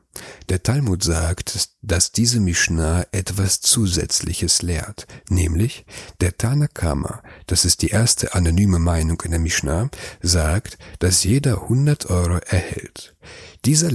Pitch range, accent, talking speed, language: 90-120 Hz, German, 120 wpm, German